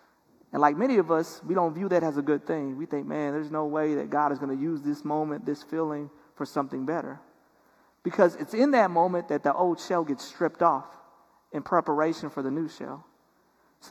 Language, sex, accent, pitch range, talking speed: English, male, American, 145-195 Hz, 220 wpm